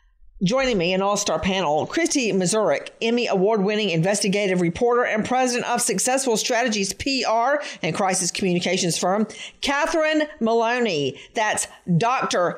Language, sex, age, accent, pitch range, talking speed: English, female, 50-69, American, 190-255 Hz, 120 wpm